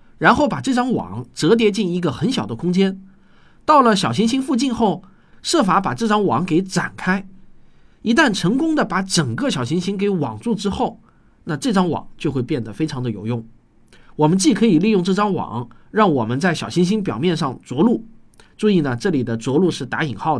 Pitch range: 135-230 Hz